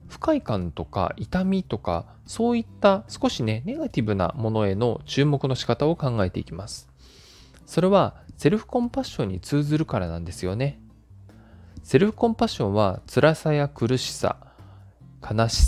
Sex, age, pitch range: male, 20-39, 95-155 Hz